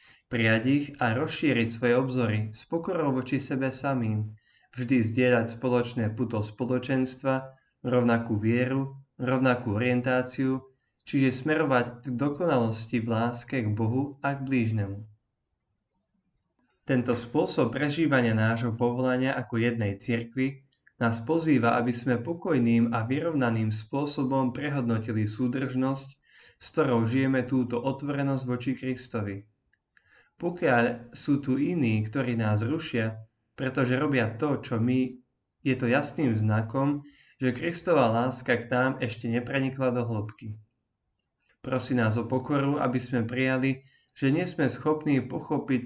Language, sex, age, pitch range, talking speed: Slovak, male, 20-39, 115-135 Hz, 120 wpm